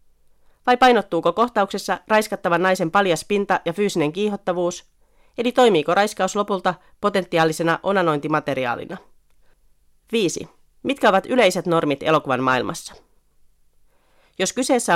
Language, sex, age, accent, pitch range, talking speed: Finnish, female, 30-49, native, 155-205 Hz, 100 wpm